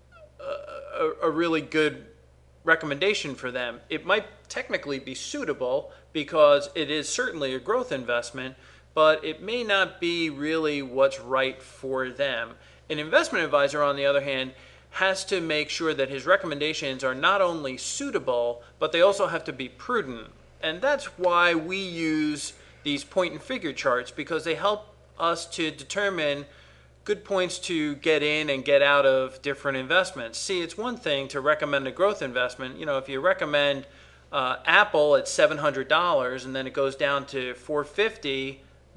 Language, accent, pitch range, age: English, American, 130-175 Hz, 40-59